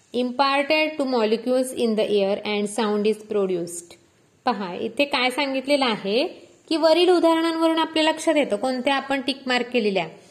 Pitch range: 215-285 Hz